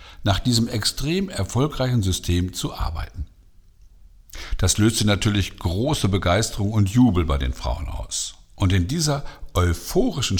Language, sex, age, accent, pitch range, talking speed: German, male, 60-79, German, 85-120 Hz, 125 wpm